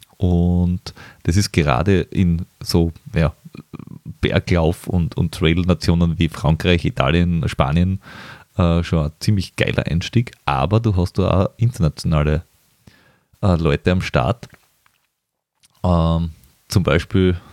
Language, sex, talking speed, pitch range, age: German, male, 115 wpm, 90-115 Hz, 30-49